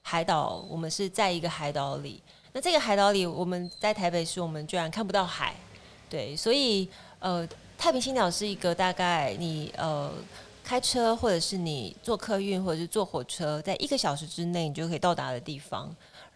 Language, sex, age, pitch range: Chinese, female, 30-49, 155-210 Hz